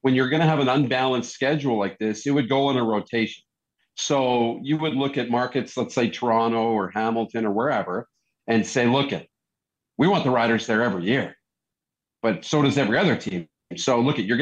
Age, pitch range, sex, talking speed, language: 40-59, 110-150 Hz, male, 210 wpm, English